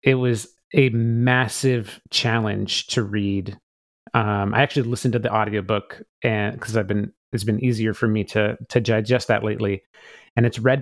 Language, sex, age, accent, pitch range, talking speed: English, male, 30-49, American, 110-140 Hz, 175 wpm